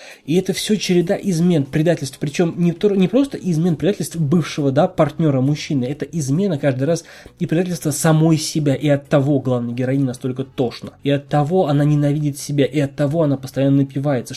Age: 20-39